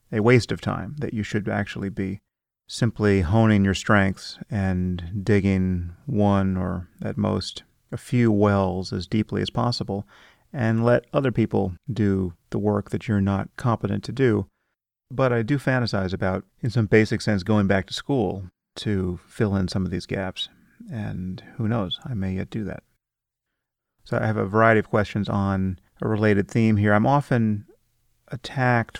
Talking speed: 170 wpm